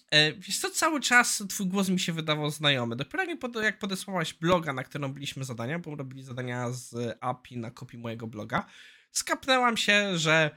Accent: native